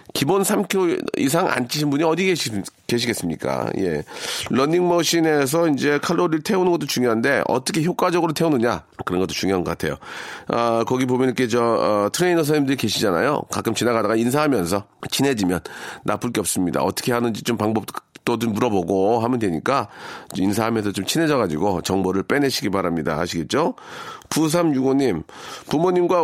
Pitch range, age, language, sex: 110-160 Hz, 40-59, Korean, male